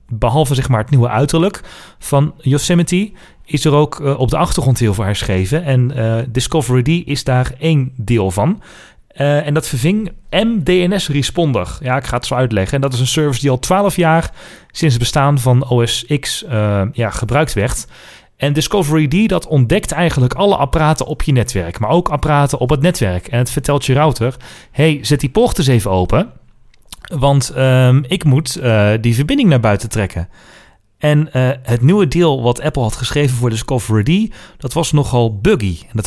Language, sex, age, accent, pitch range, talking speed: Dutch, male, 30-49, Dutch, 125-160 Hz, 190 wpm